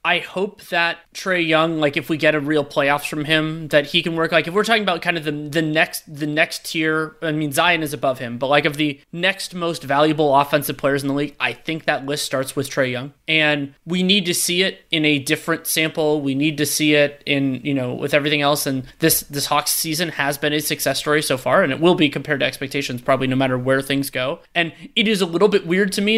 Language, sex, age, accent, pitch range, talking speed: English, male, 30-49, American, 145-175 Hz, 255 wpm